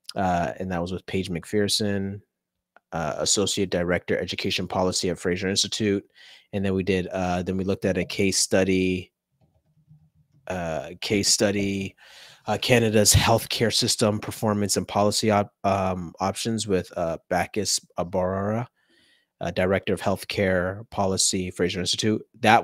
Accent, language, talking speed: American, English, 140 wpm